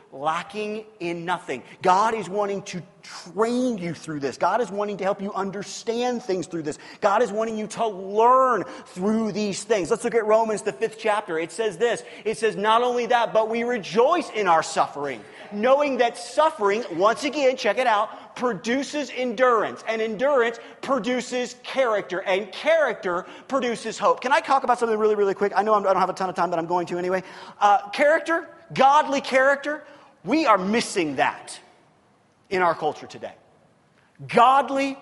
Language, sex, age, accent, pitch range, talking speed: English, male, 30-49, American, 205-275 Hz, 180 wpm